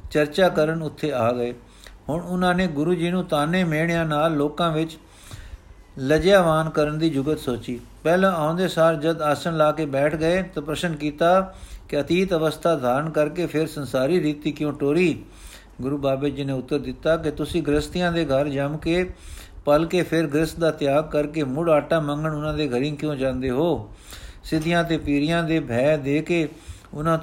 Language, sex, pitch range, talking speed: Punjabi, male, 140-165 Hz, 180 wpm